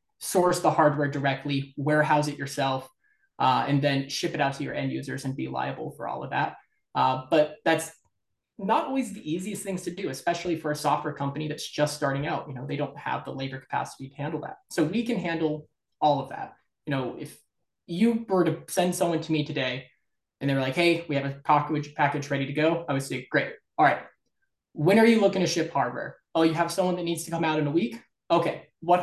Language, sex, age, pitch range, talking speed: English, male, 20-39, 145-170 Hz, 230 wpm